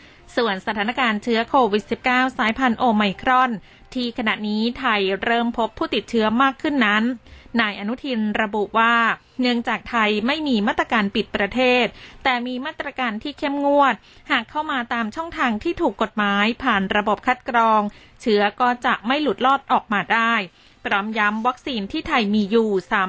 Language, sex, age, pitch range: Thai, female, 20-39, 215-255 Hz